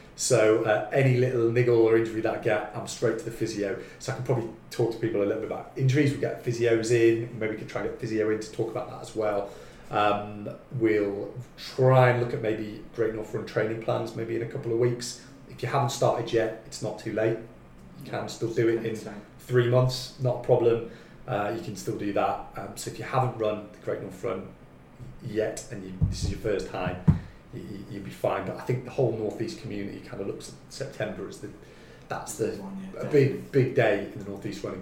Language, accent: English, British